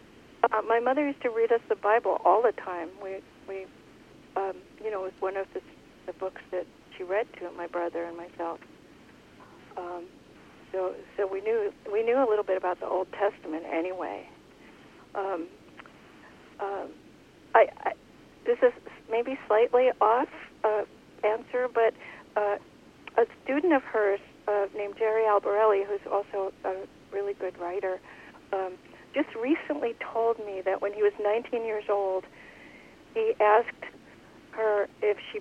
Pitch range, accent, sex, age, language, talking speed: 190-265 Hz, American, female, 60-79, English, 155 wpm